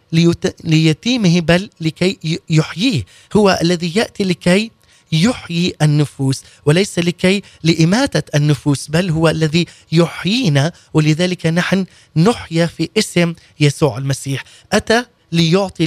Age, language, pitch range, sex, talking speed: 20-39, Arabic, 150-190 Hz, male, 100 wpm